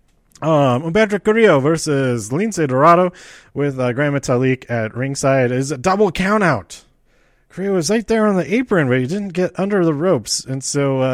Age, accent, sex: 30-49, American, male